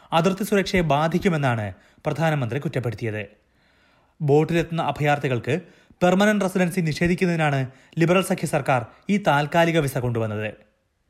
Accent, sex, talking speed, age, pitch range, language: native, male, 90 wpm, 30-49, 130-180 Hz, Malayalam